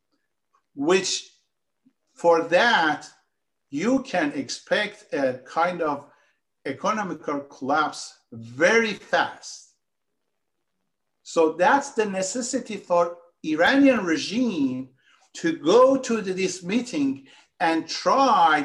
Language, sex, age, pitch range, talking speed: Persian, male, 50-69, 170-260 Hz, 85 wpm